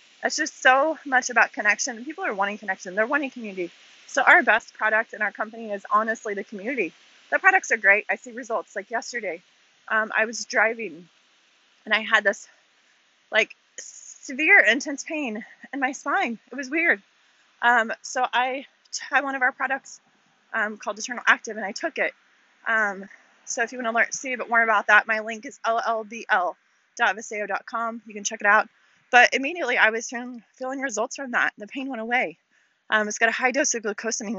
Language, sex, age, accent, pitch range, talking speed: English, female, 20-39, American, 210-255 Hz, 190 wpm